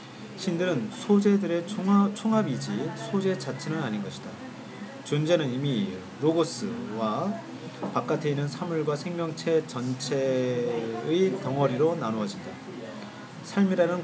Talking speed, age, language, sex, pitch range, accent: 80 wpm, 40-59, English, male, 125-165 Hz, Korean